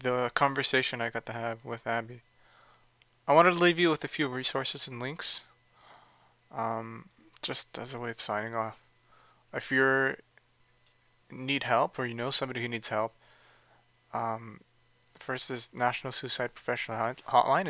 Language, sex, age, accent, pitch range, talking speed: English, male, 20-39, American, 120-135 Hz, 155 wpm